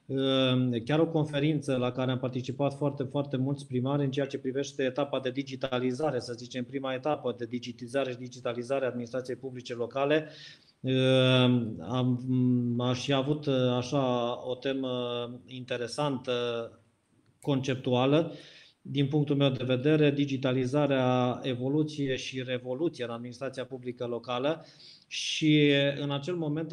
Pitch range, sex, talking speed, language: 125-140 Hz, male, 120 wpm, Romanian